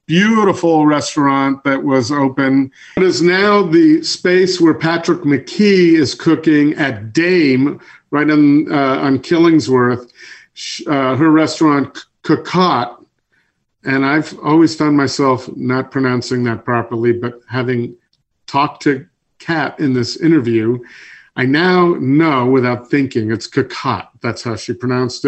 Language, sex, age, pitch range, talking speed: English, male, 50-69, 130-170 Hz, 130 wpm